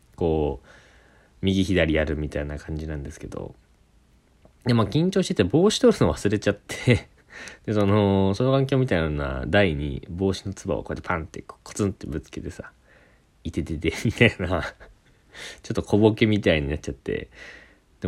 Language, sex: Japanese, male